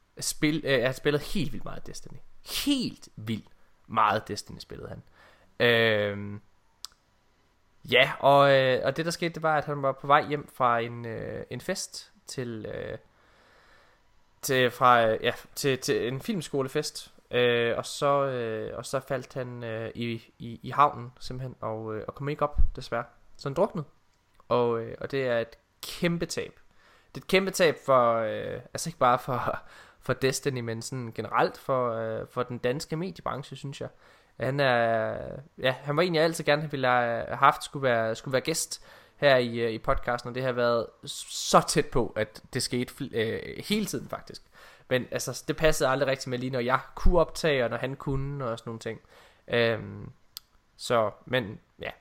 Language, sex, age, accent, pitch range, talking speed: Danish, male, 20-39, native, 115-145 Hz, 185 wpm